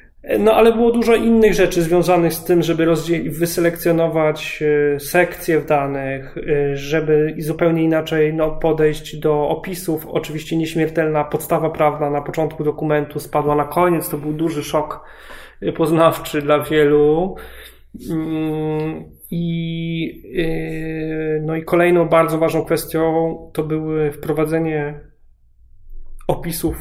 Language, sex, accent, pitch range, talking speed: Polish, male, native, 150-170 Hz, 110 wpm